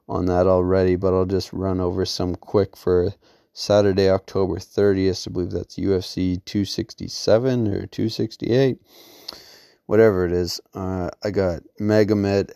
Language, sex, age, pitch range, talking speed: English, male, 20-39, 90-105 Hz, 135 wpm